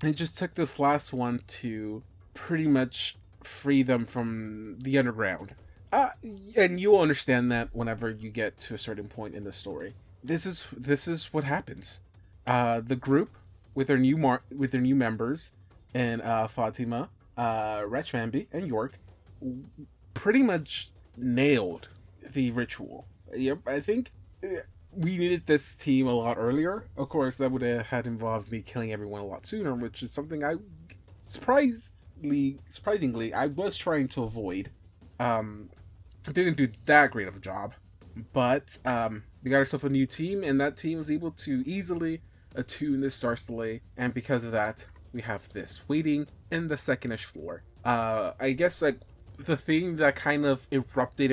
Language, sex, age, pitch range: English, male, 20-39, 105-145 Hz